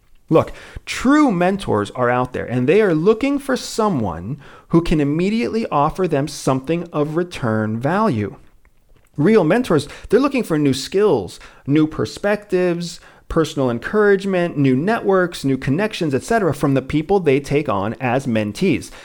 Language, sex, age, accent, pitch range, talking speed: English, male, 40-59, American, 130-200 Hz, 140 wpm